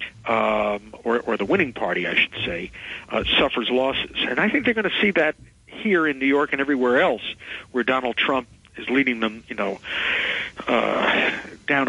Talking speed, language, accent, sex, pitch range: 185 wpm, English, American, male, 110-155 Hz